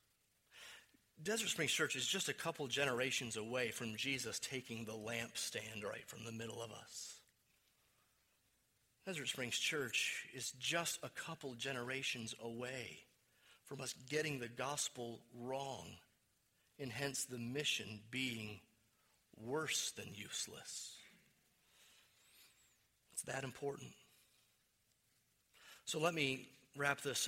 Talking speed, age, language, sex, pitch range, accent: 110 wpm, 40-59, English, male, 125-180 Hz, American